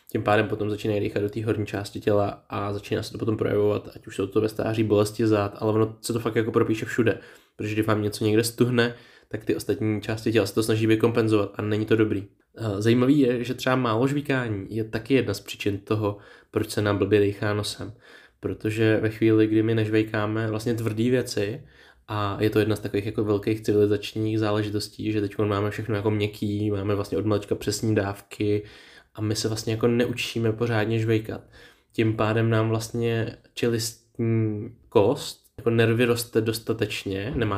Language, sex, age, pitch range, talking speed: Czech, male, 20-39, 105-115 Hz, 190 wpm